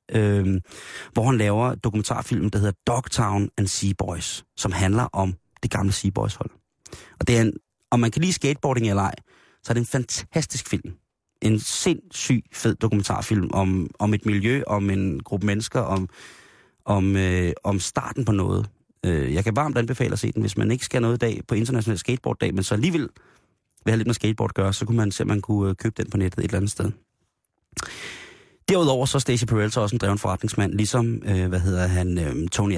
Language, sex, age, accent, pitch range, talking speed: Danish, male, 30-49, native, 95-115 Hz, 200 wpm